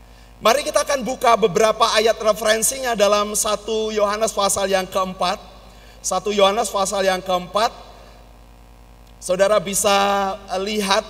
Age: 40-59